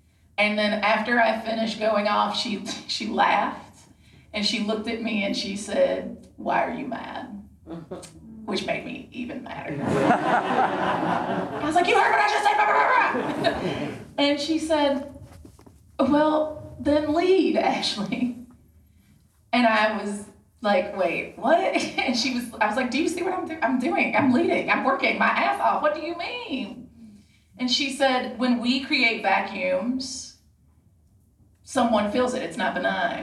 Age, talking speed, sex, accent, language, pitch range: 30-49, 165 wpm, female, American, English, 185-260 Hz